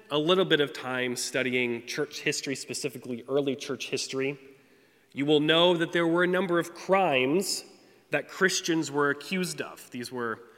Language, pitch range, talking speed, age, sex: English, 125-165 Hz, 165 wpm, 20-39, male